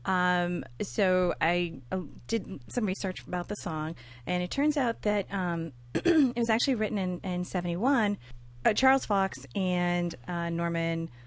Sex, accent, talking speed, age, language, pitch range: female, American, 155 wpm, 30-49, English, 155-200 Hz